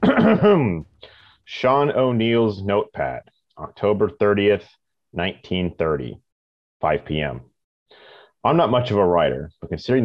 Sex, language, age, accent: male, English, 30-49, American